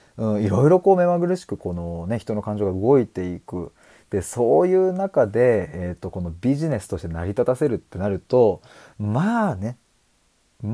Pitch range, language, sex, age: 95-145 Hz, Japanese, male, 30-49